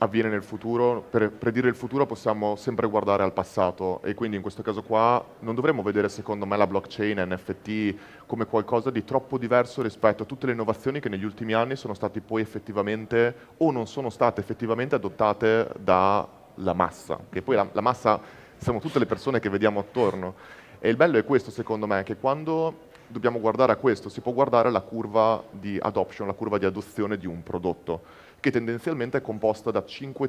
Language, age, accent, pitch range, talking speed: Italian, 30-49, native, 105-130 Hz, 190 wpm